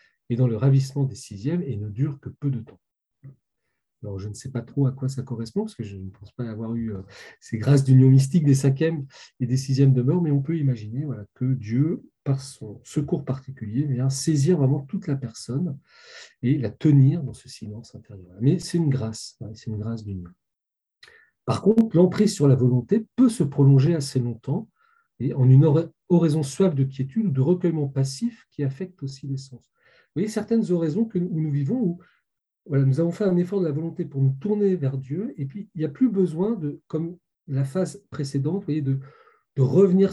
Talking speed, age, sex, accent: 205 wpm, 40-59, male, French